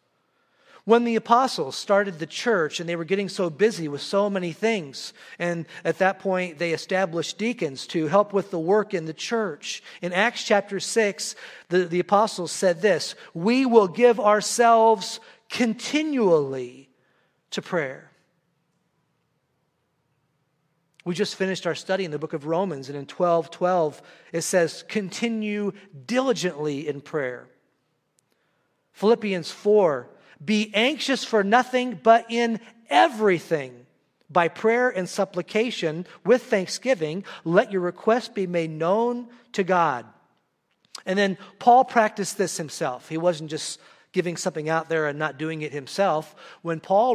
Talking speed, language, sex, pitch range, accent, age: 140 wpm, English, male, 160-215 Hz, American, 40-59